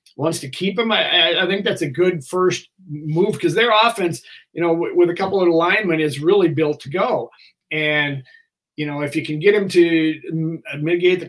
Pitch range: 140-175 Hz